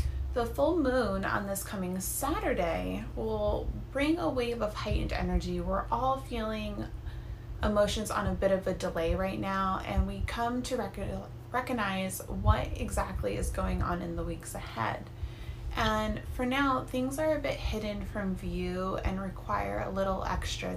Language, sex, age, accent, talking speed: English, female, 20-39, American, 160 wpm